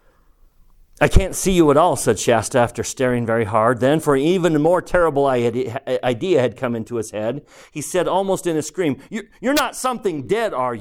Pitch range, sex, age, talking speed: 120-170 Hz, male, 40-59, 195 wpm